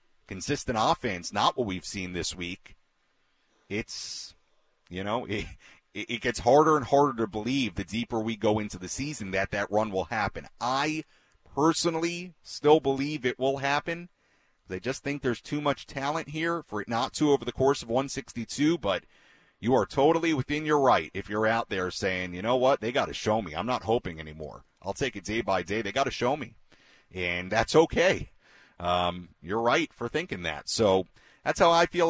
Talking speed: 195 wpm